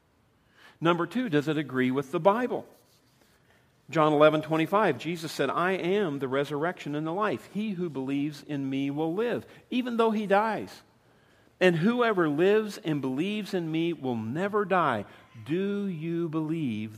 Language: English